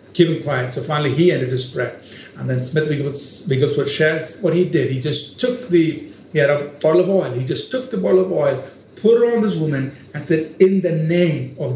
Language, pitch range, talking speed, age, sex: English, 135-185 Hz, 240 wpm, 50-69, male